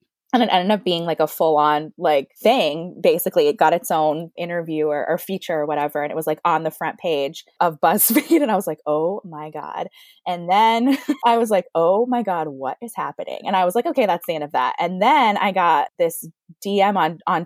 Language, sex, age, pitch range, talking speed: English, female, 20-39, 165-215 Hz, 235 wpm